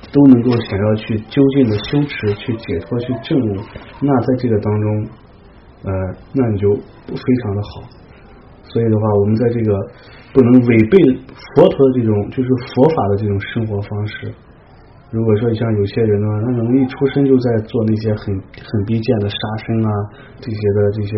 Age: 30-49